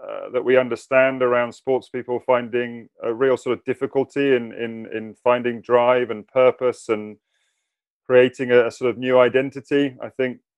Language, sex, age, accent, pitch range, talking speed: English, male, 30-49, British, 125-145 Hz, 170 wpm